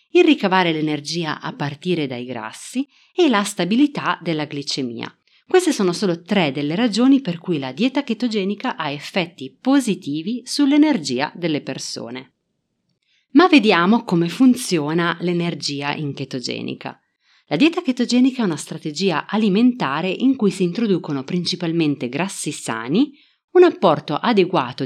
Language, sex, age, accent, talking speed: Italian, female, 30-49, native, 130 wpm